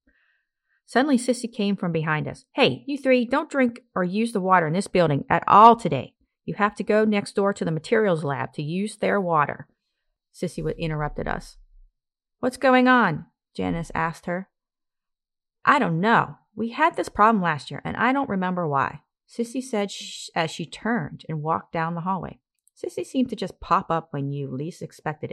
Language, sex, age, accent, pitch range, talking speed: English, female, 30-49, American, 145-220 Hz, 185 wpm